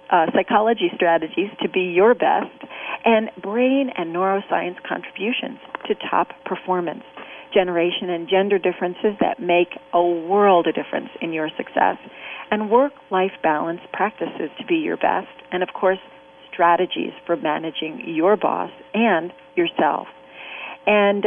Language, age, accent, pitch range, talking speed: English, 40-59, American, 175-225 Hz, 135 wpm